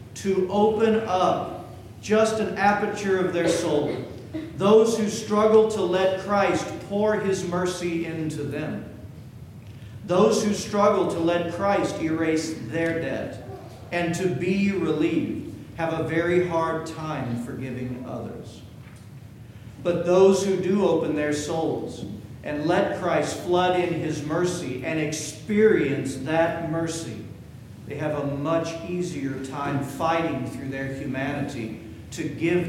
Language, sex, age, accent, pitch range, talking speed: English, male, 50-69, American, 135-180 Hz, 130 wpm